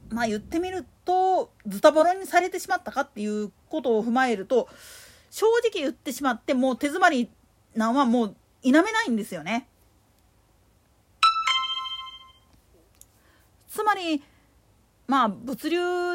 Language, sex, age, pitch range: Japanese, female, 40-59, 230-345 Hz